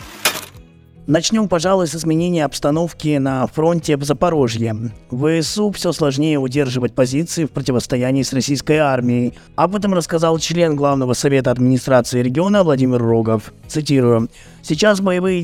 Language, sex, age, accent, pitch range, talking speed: Russian, male, 20-39, native, 125-165 Hz, 130 wpm